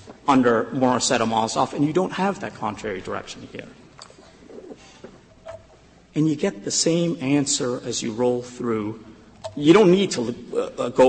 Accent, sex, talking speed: American, male, 140 wpm